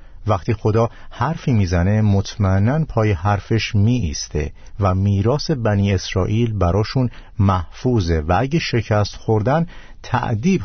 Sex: male